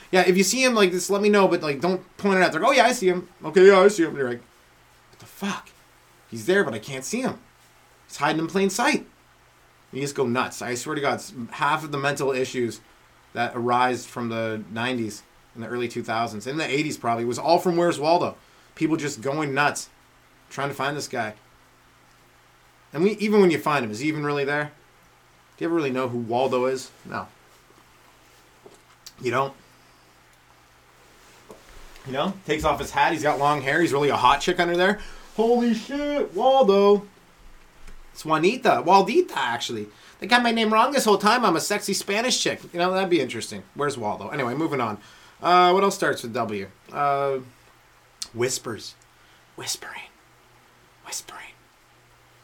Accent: American